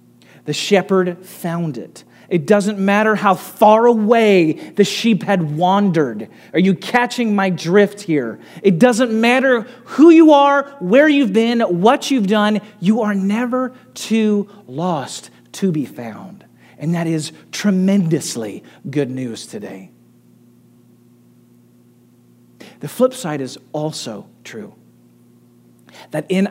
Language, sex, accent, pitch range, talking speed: English, male, American, 160-245 Hz, 125 wpm